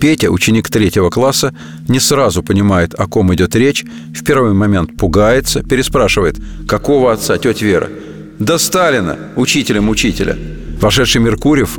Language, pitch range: Russian, 100-130 Hz